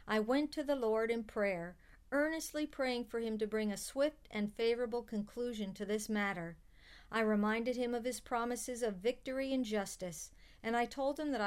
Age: 50-69